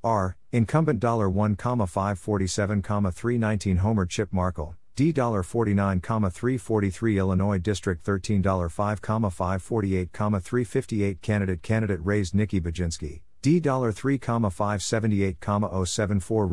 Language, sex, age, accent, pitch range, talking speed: English, male, 50-69, American, 95-115 Hz, 80 wpm